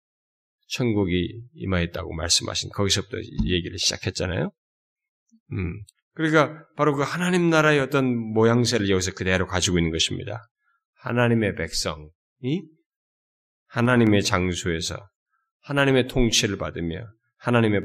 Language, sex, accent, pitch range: Korean, male, native, 90-140 Hz